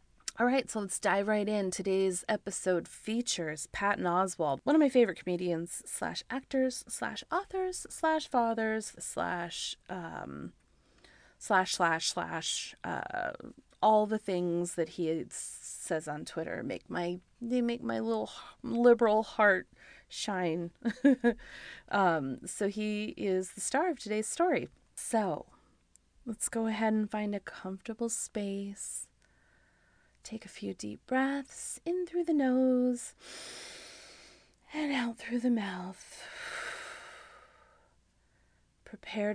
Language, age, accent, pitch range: English, 30-49, American, 170-235 Hz